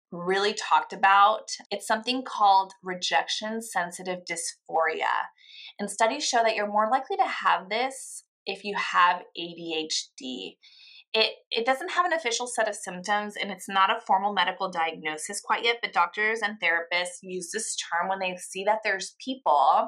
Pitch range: 180-235 Hz